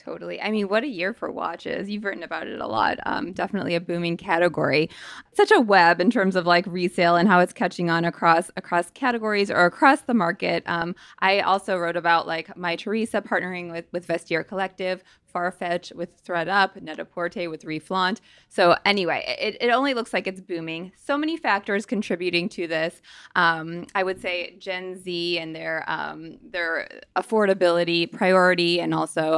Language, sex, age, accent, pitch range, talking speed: English, female, 20-39, American, 175-215 Hz, 180 wpm